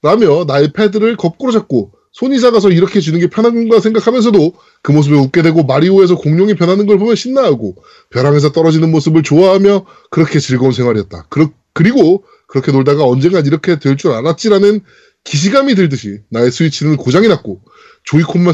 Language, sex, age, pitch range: Korean, male, 20-39, 140-220 Hz